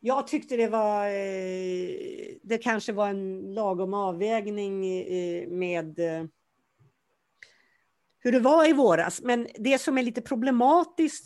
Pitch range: 190-255 Hz